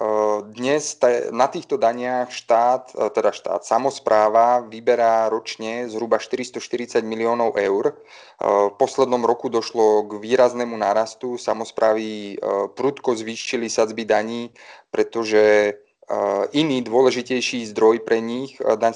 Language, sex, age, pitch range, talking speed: Slovak, male, 30-49, 110-125 Hz, 105 wpm